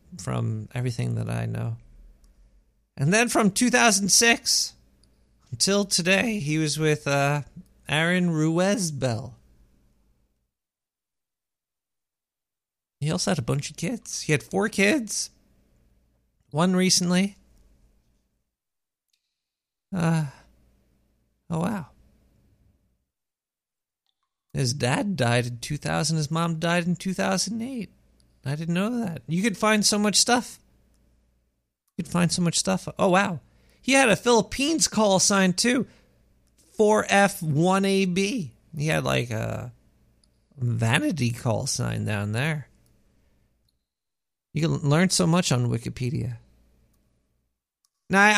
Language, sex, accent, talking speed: English, male, American, 110 wpm